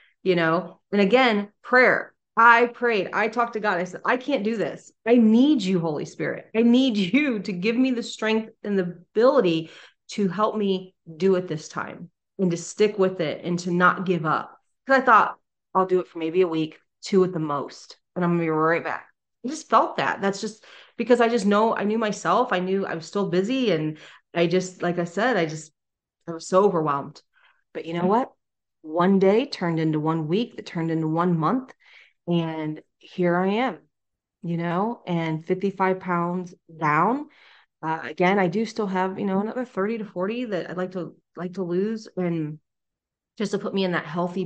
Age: 30-49